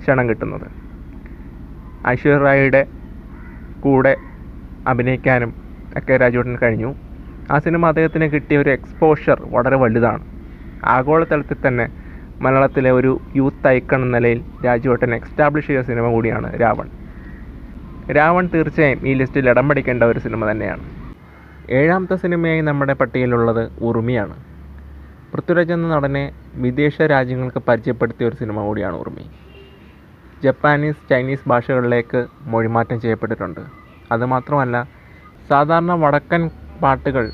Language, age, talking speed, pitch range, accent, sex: Malayalam, 30-49, 100 wpm, 110-140 Hz, native, male